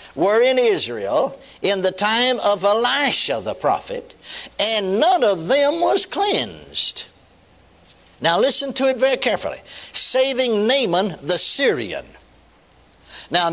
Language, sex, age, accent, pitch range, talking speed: English, male, 60-79, American, 180-300 Hz, 120 wpm